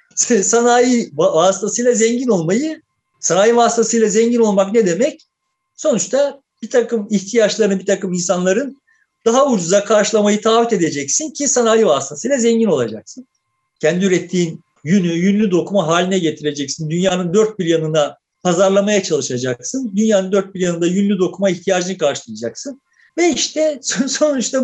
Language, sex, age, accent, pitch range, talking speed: Turkish, male, 50-69, native, 180-270 Hz, 125 wpm